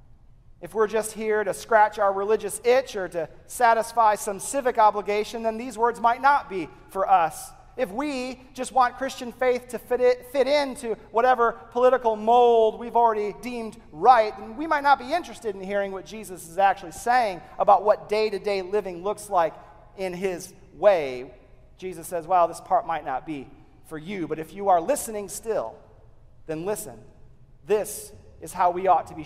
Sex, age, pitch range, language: male, 40-59, 165-240 Hz, English